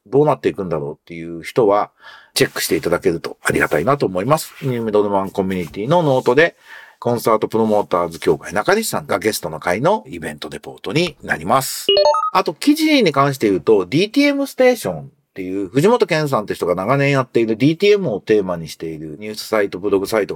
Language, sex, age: Japanese, male, 40-59